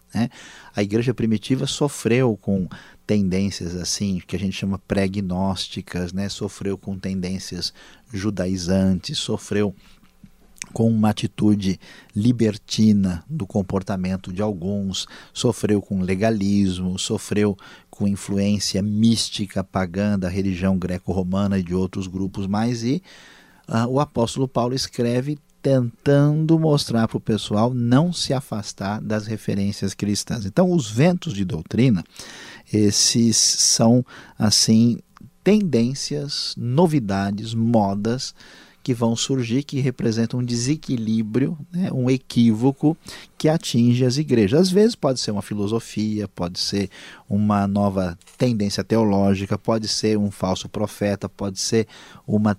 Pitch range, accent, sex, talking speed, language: 100-120 Hz, Brazilian, male, 120 wpm, Portuguese